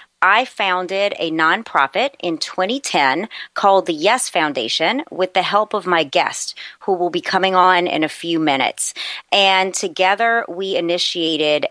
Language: English